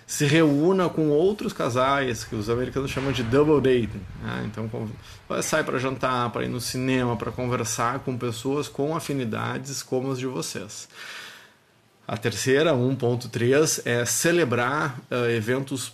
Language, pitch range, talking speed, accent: Portuguese, 115-140 Hz, 140 wpm, Brazilian